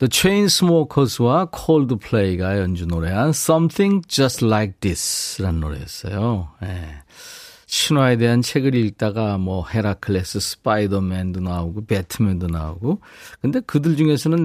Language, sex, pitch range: Korean, male, 100-160 Hz